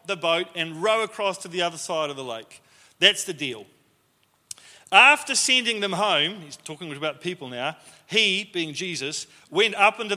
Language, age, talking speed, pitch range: English, 40-59, 175 wpm, 165-220 Hz